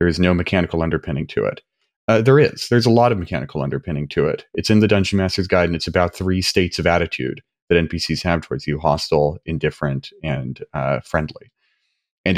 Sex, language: male, English